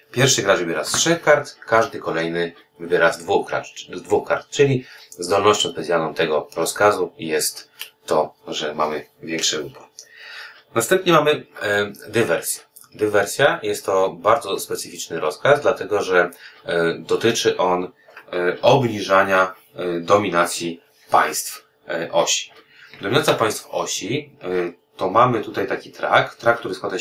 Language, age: Polish, 30-49